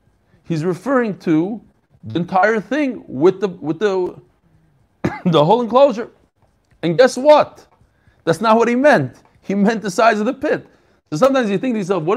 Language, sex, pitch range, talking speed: English, male, 125-215 Hz, 175 wpm